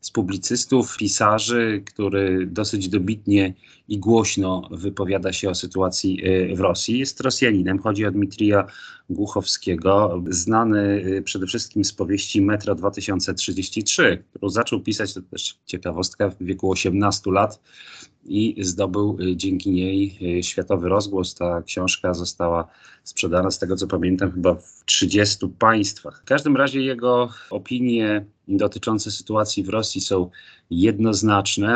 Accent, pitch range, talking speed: native, 95-110 Hz, 125 wpm